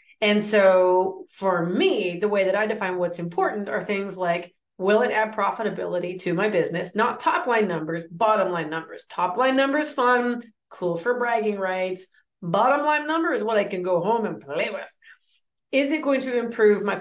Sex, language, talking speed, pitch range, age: female, English, 185 wpm, 185-255 Hz, 30-49